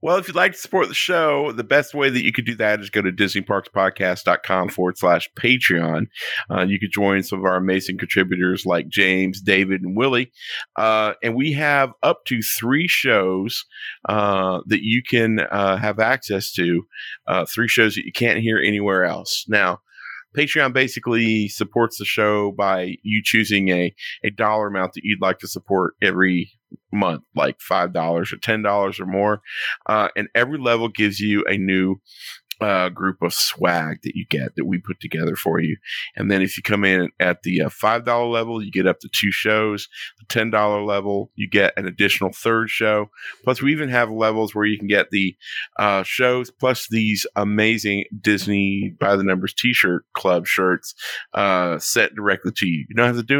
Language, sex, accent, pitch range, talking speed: English, male, American, 95-115 Hz, 190 wpm